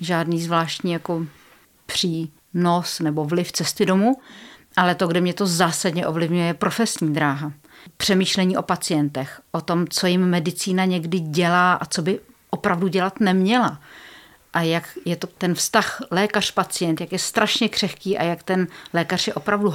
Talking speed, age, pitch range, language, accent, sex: 150 wpm, 50-69, 175-205 Hz, Czech, native, female